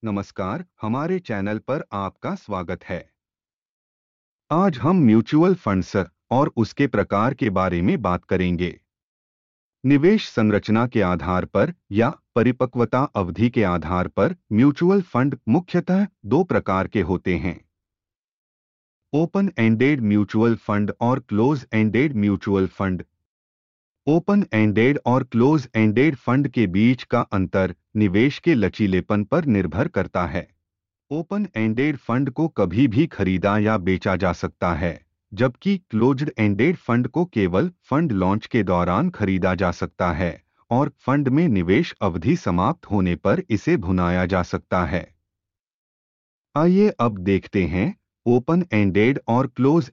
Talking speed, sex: 135 wpm, male